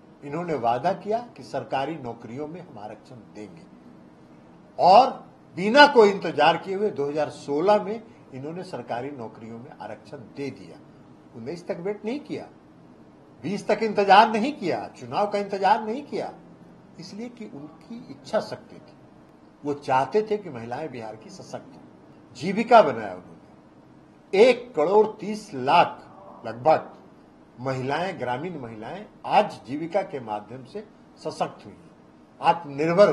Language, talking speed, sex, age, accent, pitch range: Hindi, 130 wpm, male, 50-69, native, 135-210 Hz